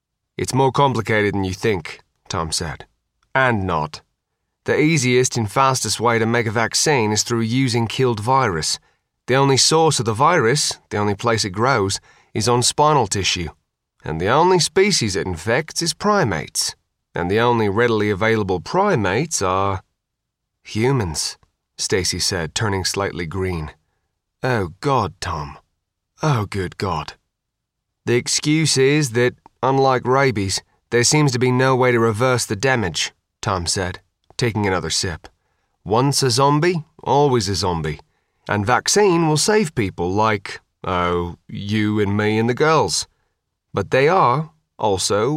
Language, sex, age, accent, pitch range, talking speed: English, male, 30-49, British, 100-135 Hz, 145 wpm